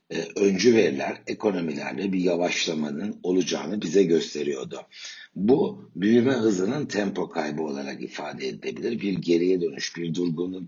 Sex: male